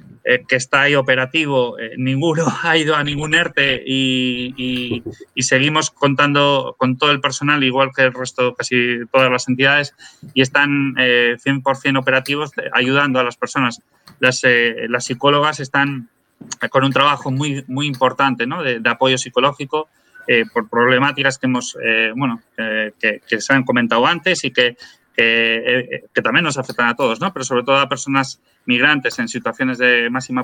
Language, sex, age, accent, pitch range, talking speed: Spanish, male, 20-39, Spanish, 120-140 Hz, 175 wpm